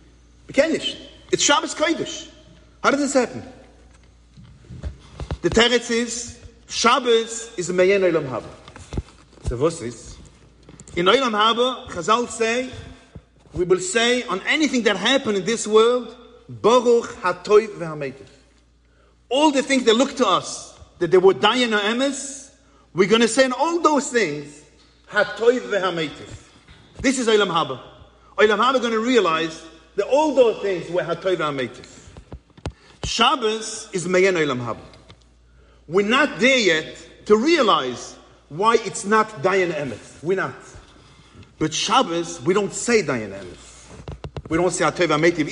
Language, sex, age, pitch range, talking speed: English, male, 40-59, 160-250 Hz, 140 wpm